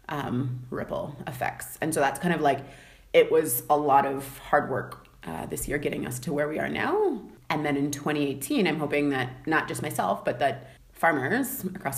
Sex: female